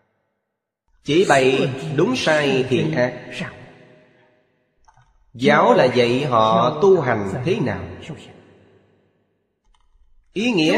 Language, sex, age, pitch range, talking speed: Vietnamese, male, 20-39, 125-180 Hz, 90 wpm